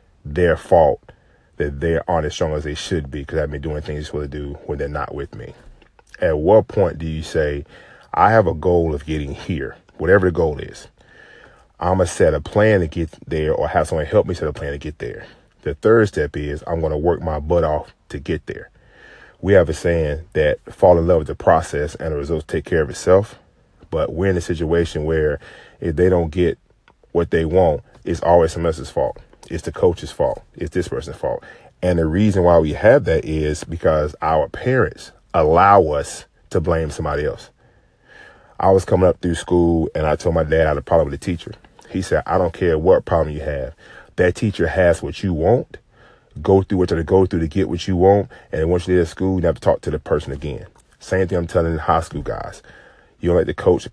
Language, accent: English, American